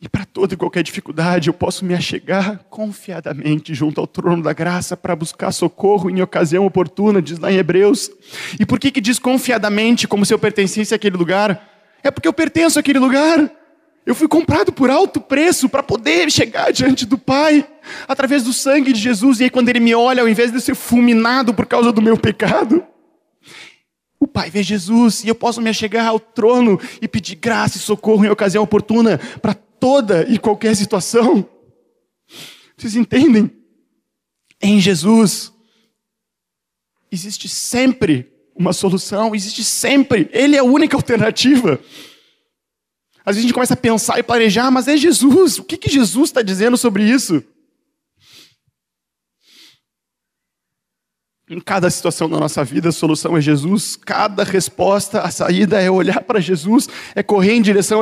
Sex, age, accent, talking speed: male, 20-39, Brazilian, 160 wpm